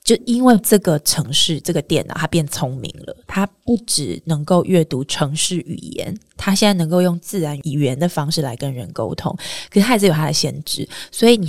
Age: 20-39